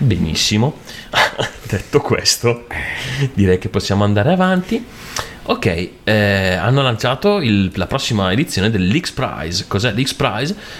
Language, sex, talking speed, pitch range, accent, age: Italian, male, 115 wpm, 95-115 Hz, native, 30-49